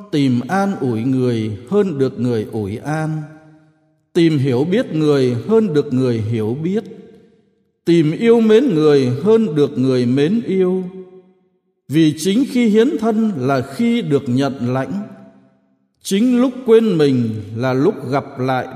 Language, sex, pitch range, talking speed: Vietnamese, male, 130-205 Hz, 145 wpm